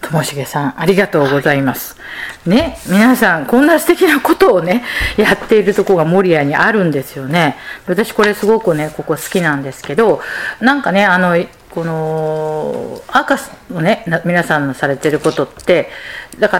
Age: 40-59